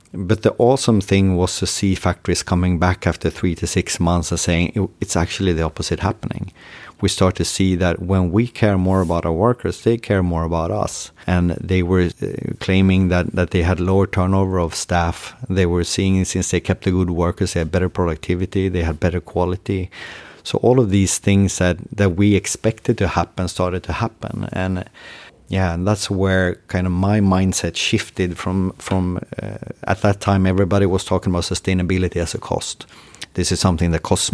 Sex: male